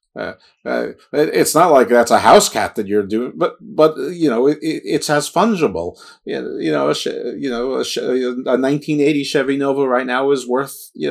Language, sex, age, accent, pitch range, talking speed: English, male, 50-69, American, 110-155 Hz, 210 wpm